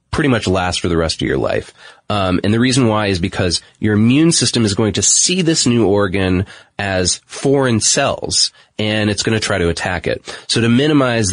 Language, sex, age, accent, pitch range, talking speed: English, male, 30-49, American, 85-115 Hz, 210 wpm